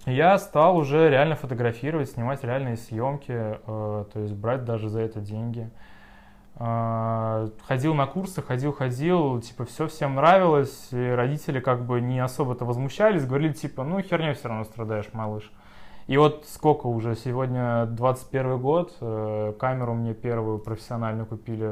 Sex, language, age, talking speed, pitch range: male, Russian, 20-39, 145 wpm, 115-145 Hz